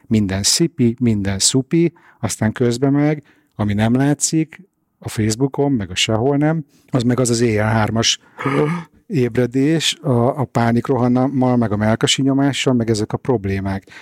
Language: Hungarian